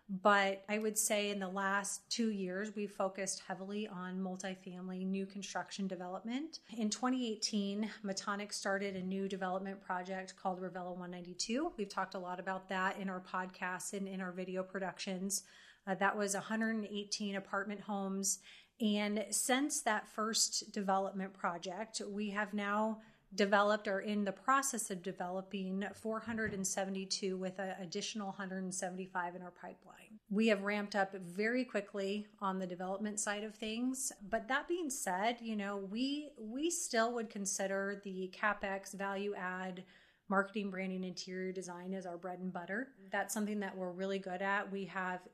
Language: English